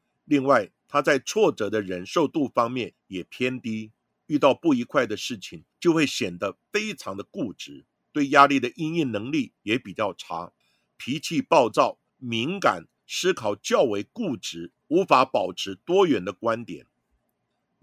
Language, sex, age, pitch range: Chinese, male, 50-69, 110-180 Hz